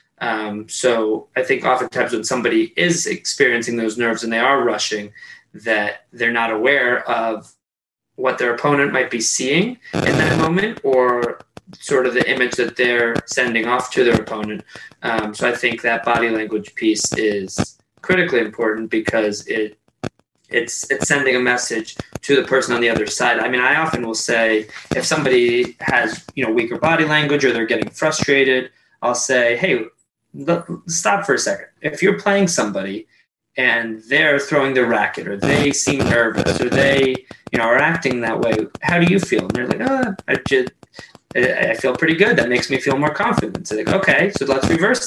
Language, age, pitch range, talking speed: English, 20-39, 115-150 Hz, 185 wpm